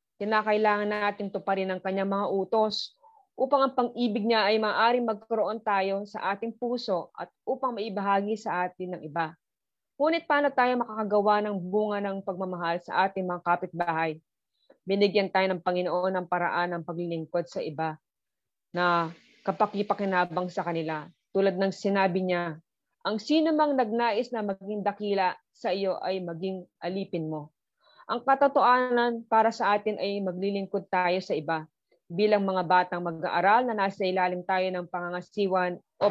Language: Filipino